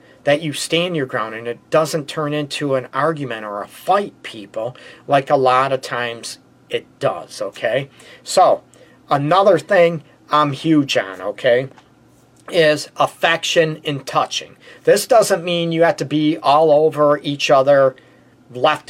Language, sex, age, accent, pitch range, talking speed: English, male, 40-59, American, 130-160 Hz, 150 wpm